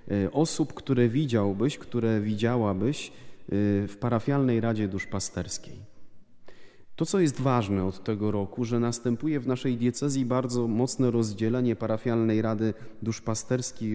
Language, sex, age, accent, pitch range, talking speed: Polish, male, 30-49, native, 105-125 Hz, 115 wpm